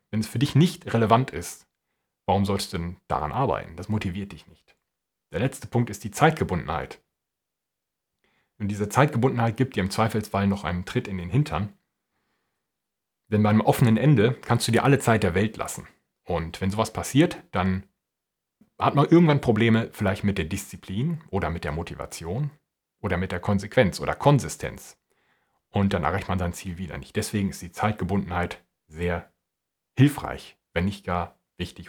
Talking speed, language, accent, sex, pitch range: 165 wpm, German, German, male, 90-125 Hz